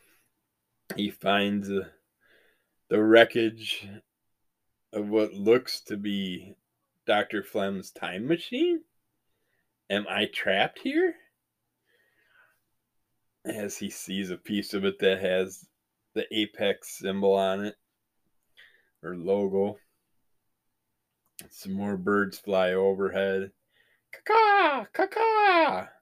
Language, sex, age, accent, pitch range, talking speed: English, male, 20-39, American, 95-155 Hz, 95 wpm